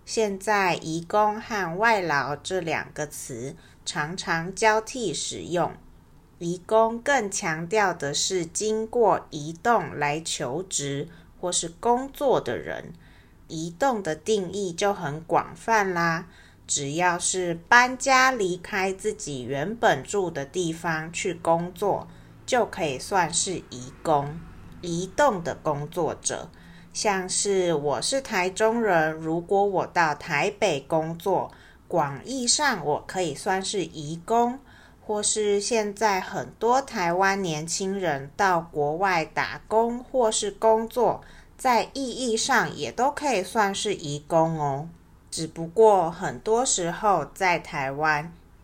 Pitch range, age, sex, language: 160-215 Hz, 30-49, female, Chinese